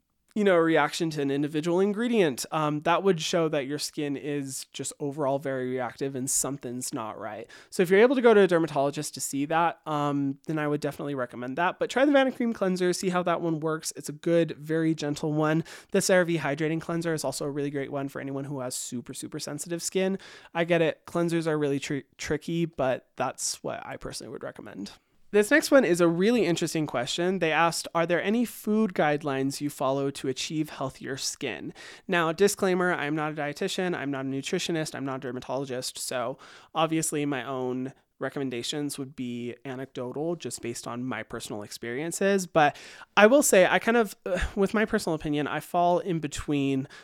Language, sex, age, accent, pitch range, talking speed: English, male, 20-39, American, 135-170 Hz, 200 wpm